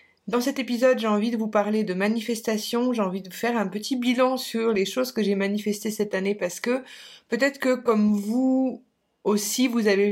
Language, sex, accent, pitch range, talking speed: French, female, French, 190-235 Hz, 200 wpm